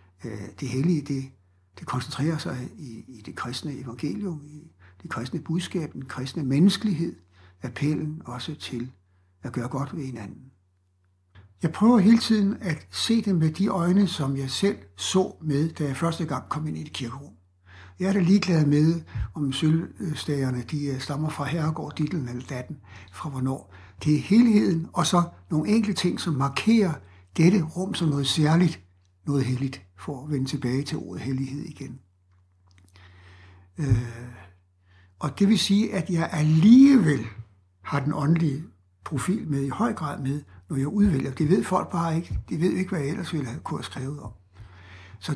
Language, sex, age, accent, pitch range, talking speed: Danish, male, 60-79, native, 110-165 Hz, 170 wpm